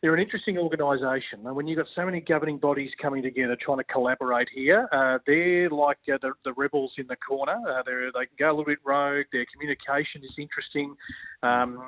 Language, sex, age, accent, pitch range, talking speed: English, male, 30-49, Australian, 125-150 Hz, 205 wpm